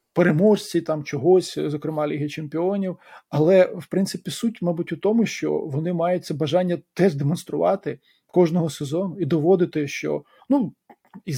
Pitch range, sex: 155-195 Hz, male